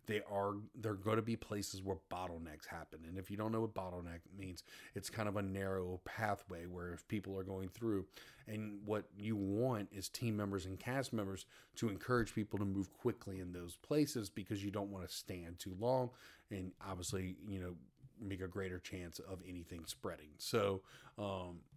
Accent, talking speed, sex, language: American, 195 wpm, male, English